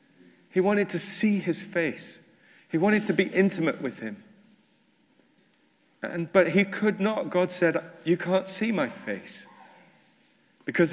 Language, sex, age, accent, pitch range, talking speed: English, male, 40-59, British, 125-190 Hz, 145 wpm